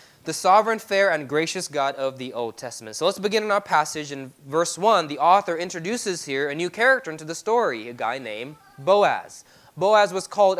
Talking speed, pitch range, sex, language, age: 205 wpm, 155-200 Hz, male, English, 20-39